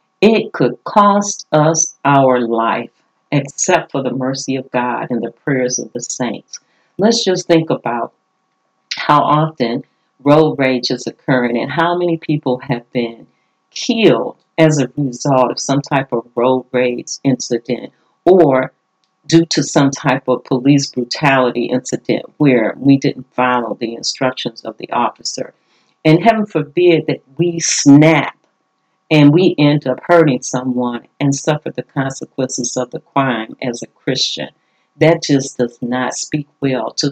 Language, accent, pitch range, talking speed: English, American, 130-165 Hz, 150 wpm